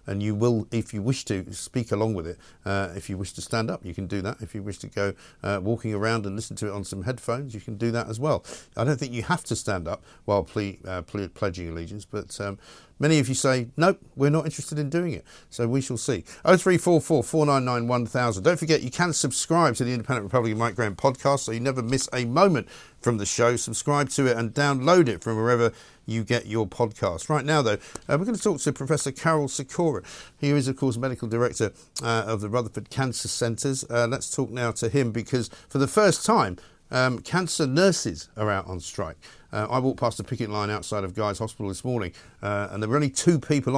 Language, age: English, 50-69